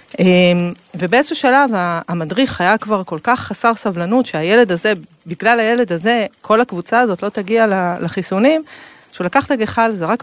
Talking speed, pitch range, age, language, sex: 145 wpm, 170-245 Hz, 40-59, Hebrew, female